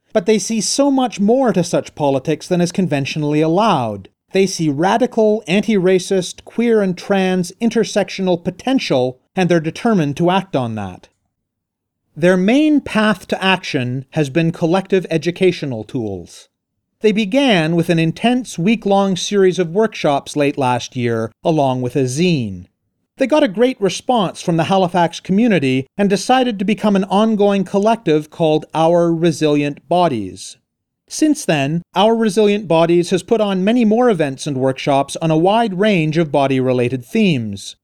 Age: 40-59